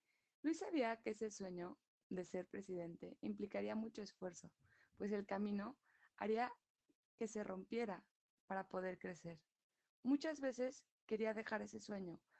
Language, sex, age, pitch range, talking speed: Spanish, female, 20-39, 180-220 Hz, 130 wpm